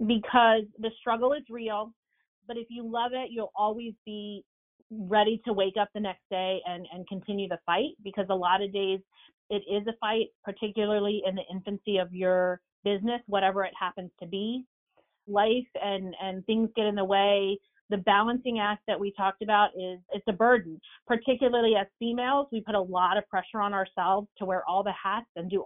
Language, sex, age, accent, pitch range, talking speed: English, female, 30-49, American, 195-235 Hz, 195 wpm